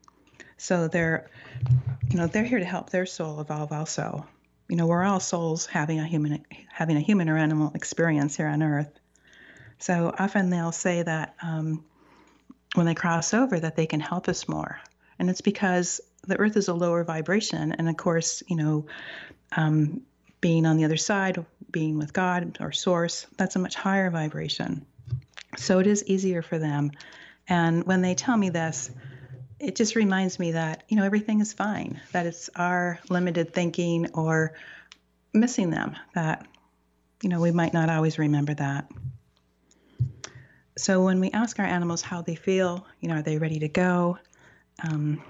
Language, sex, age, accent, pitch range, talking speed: English, female, 40-59, American, 155-180 Hz, 175 wpm